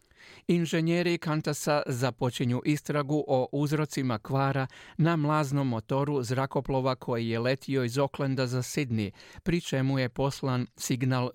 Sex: male